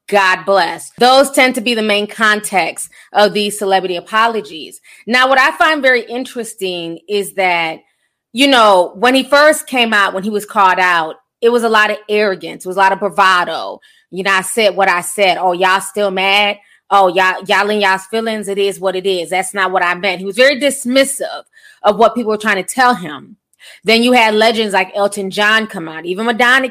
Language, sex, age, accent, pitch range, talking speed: English, female, 20-39, American, 190-235 Hz, 210 wpm